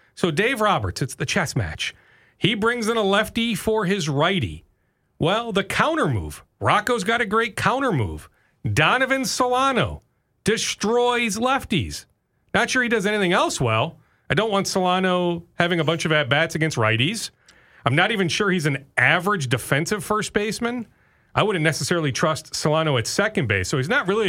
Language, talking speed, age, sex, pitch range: English, 170 wpm, 40-59, male, 130-210 Hz